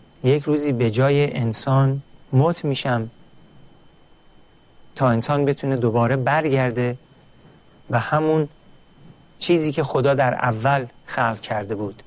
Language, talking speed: Persian, 110 wpm